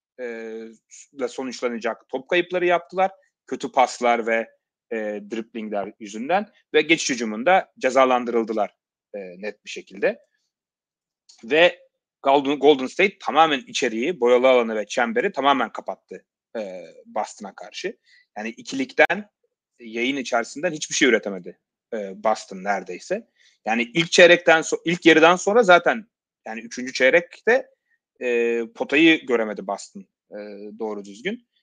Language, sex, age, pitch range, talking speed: Turkish, male, 30-49, 120-200 Hz, 120 wpm